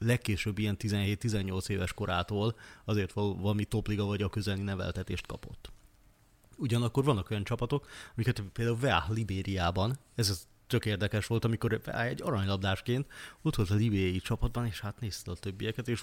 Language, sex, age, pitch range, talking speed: Hungarian, male, 30-49, 100-115 Hz, 150 wpm